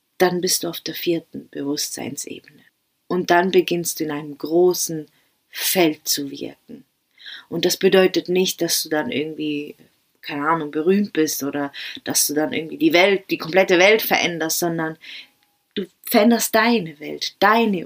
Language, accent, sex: German, German, female